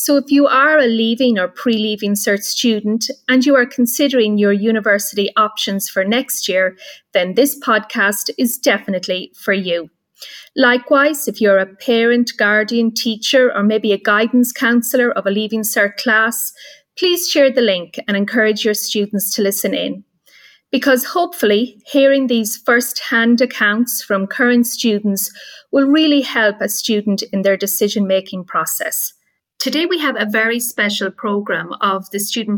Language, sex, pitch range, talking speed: English, female, 200-245 Hz, 155 wpm